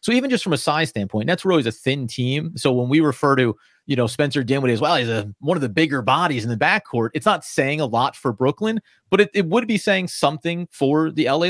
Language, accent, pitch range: English, American, 120-170 Hz